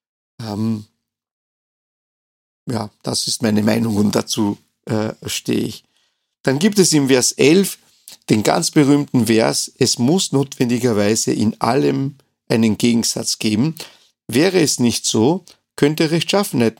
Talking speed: 125 wpm